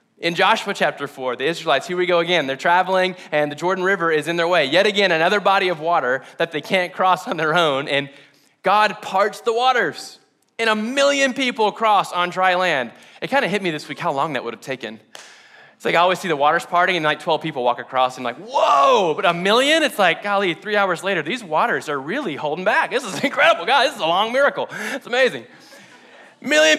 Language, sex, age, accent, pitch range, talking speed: English, male, 20-39, American, 175-240 Hz, 235 wpm